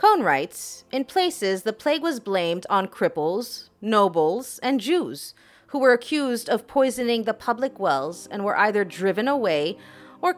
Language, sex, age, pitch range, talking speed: English, female, 30-49, 185-275 Hz, 155 wpm